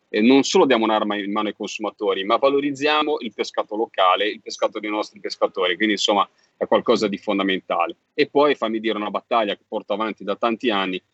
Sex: male